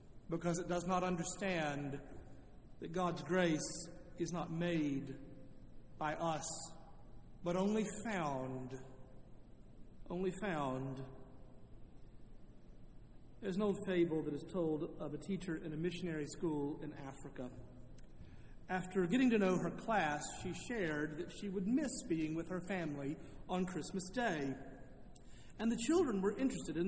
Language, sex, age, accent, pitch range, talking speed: English, male, 50-69, American, 150-210 Hz, 130 wpm